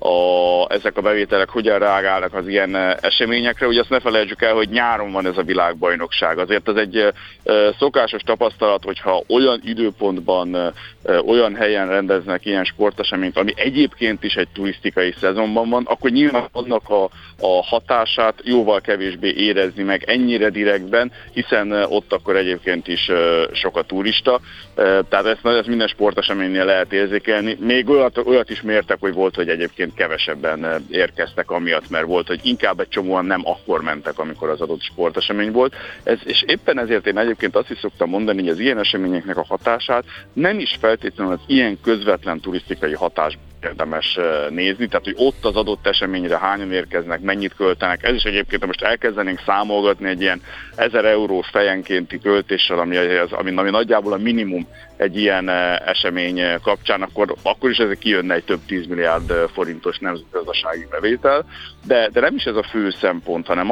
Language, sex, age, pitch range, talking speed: Hungarian, male, 50-69, 95-115 Hz, 160 wpm